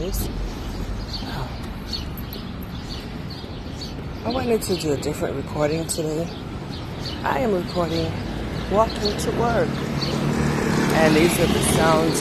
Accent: American